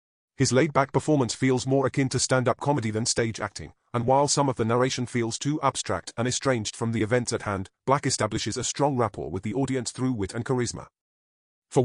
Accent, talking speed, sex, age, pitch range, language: British, 210 wpm, male, 30-49, 105-130 Hz, English